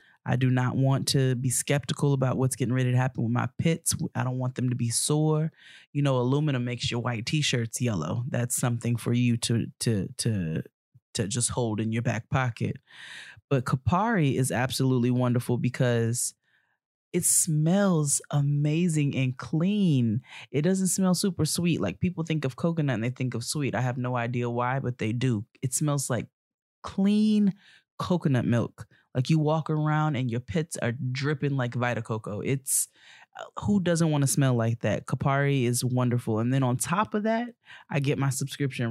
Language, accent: English, American